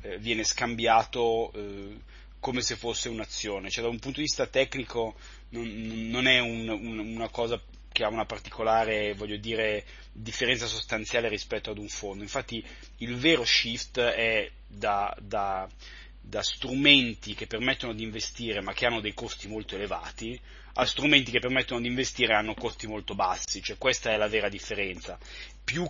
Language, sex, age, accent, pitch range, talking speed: Italian, male, 30-49, native, 110-130 Hz, 160 wpm